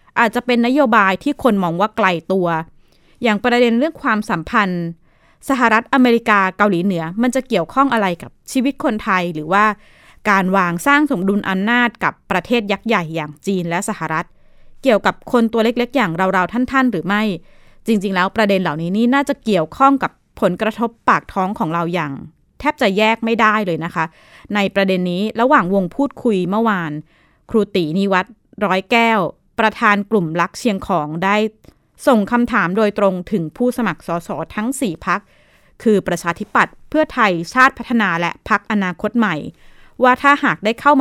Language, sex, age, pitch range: Thai, female, 20-39, 180-235 Hz